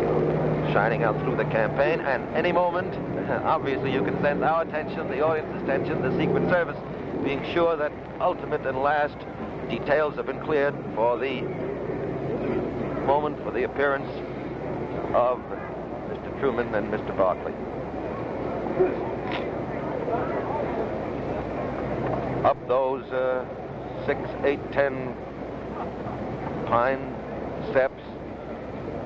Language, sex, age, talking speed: Russian, male, 60-79, 105 wpm